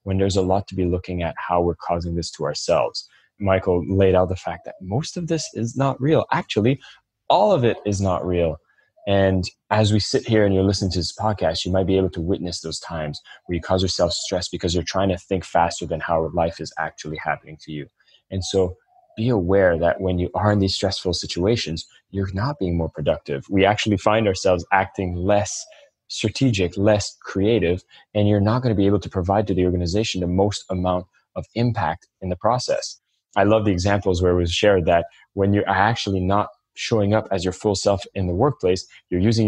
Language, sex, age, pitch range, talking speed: English, male, 20-39, 90-105 Hz, 215 wpm